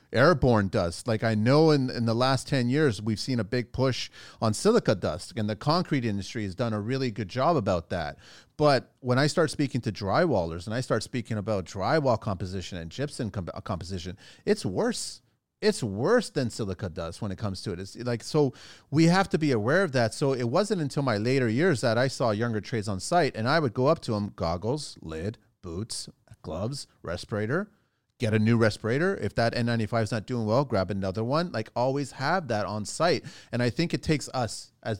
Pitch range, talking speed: 105-135 Hz, 210 wpm